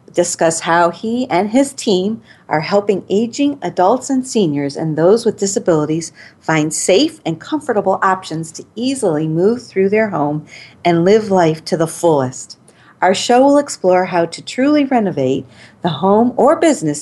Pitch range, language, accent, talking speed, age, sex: 165-235 Hz, English, American, 160 wpm, 40-59, female